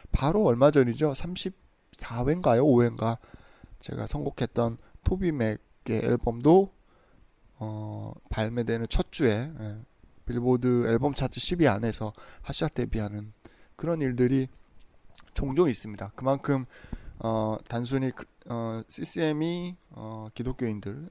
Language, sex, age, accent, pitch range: Korean, male, 20-39, native, 110-150 Hz